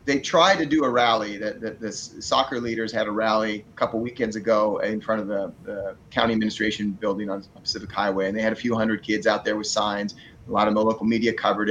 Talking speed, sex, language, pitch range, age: 240 wpm, male, English, 105-120 Hz, 30-49